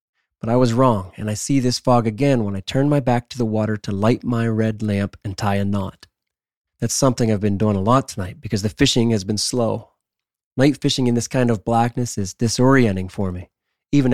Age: 30-49